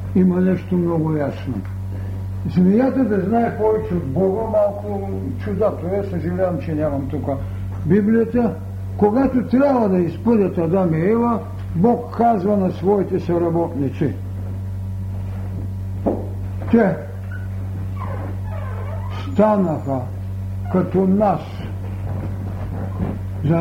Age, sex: 60-79, male